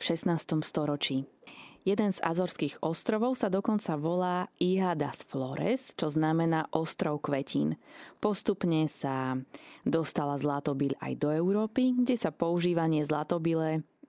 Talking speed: 115 wpm